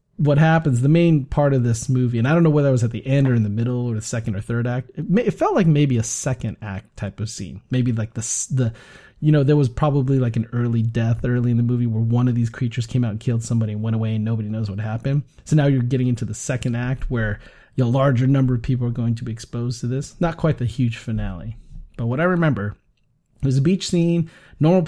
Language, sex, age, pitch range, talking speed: English, male, 30-49, 115-140 Hz, 265 wpm